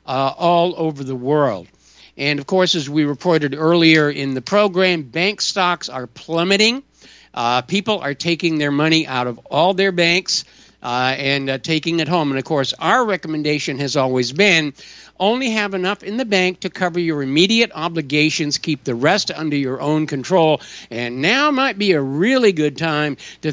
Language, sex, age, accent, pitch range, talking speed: English, male, 60-79, American, 140-185 Hz, 180 wpm